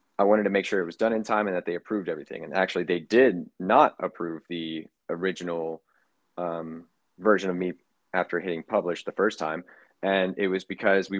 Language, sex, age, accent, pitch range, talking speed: English, male, 20-39, American, 85-100 Hz, 205 wpm